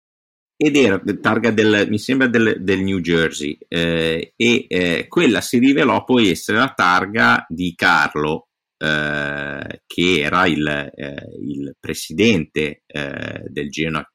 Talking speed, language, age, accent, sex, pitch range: 125 wpm, Italian, 50-69, native, male, 75-85 Hz